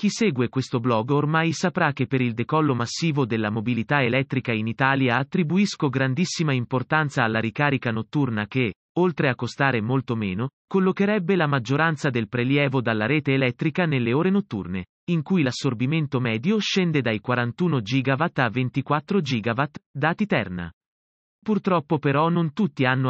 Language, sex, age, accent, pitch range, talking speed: Italian, male, 30-49, native, 125-165 Hz, 150 wpm